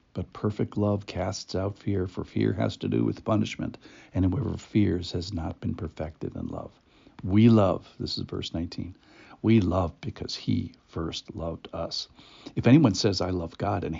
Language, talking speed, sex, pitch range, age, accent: English, 180 wpm, male, 90-115 Hz, 60-79, American